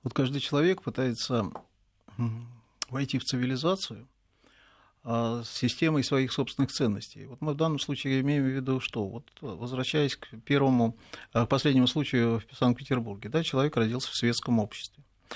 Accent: native